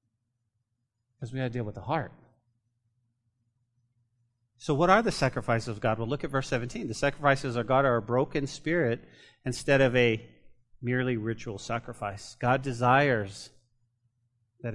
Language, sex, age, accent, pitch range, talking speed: English, male, 40-59, American, 115-125 Hz, 150 wpm